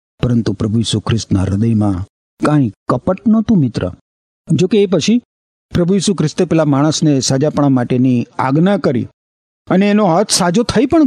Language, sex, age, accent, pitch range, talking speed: Gujarati, male, 50-69, native, 125-195 Hz, 145 wpm